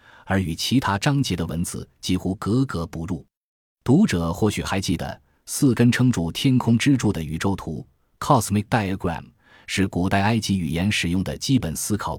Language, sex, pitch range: Chinese, male, 85-115 Hz